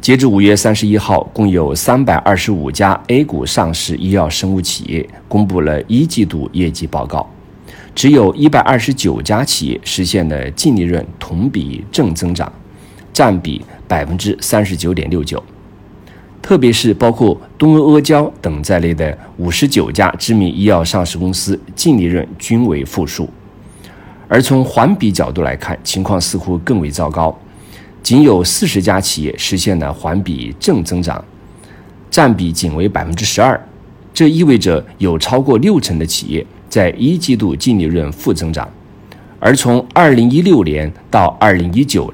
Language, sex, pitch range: Chinese, male, 85-105 Hz